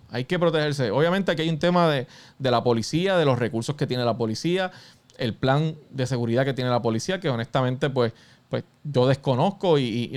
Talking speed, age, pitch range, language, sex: 205 wpm, 20-39, 120-145 Hz, Spanish, male